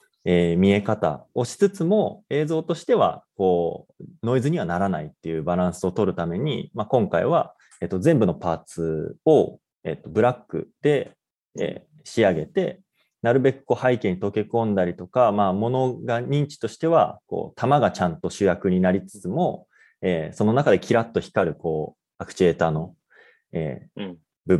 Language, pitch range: English, 90-125 Hz